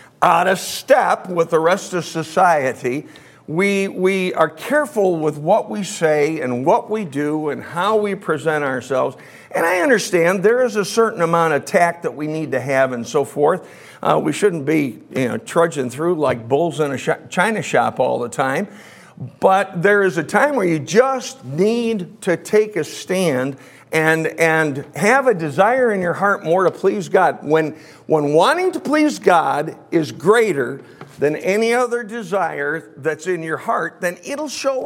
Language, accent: English, American